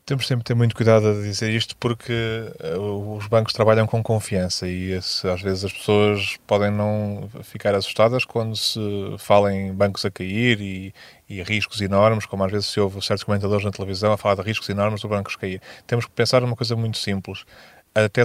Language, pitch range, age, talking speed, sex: Portuguese, 100-115 Hz, 20-39, 195 wpm, male